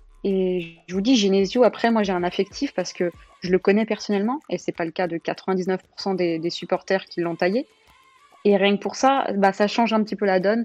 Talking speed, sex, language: 240 wpm, female, French